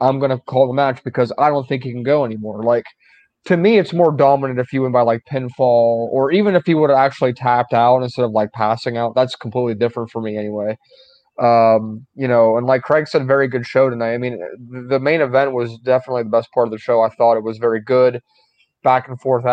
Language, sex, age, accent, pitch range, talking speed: English, male, 30-49, American, 120-135 Hz, 245 wpm